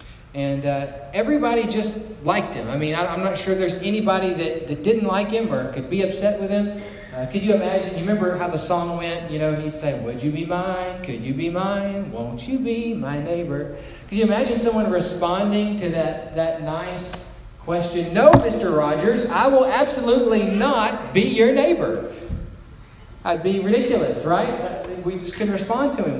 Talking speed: 190 wpm